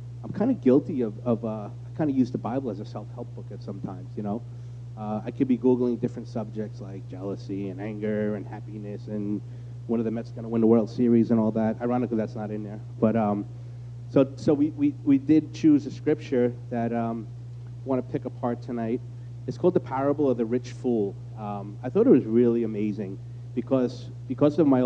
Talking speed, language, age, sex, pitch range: 220 wpm, English, 30-49, male, 115-130 Hz